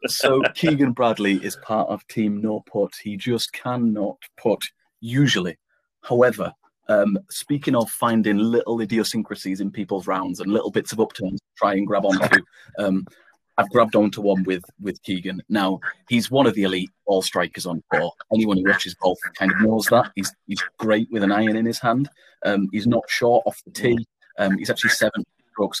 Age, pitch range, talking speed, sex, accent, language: 30-49, 100-115 Hz, 190 wpm, male, British, English